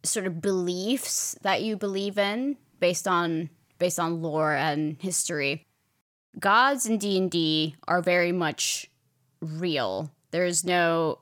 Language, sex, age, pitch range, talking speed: English, female, 20-39, 160-195 Hz, 140 wpm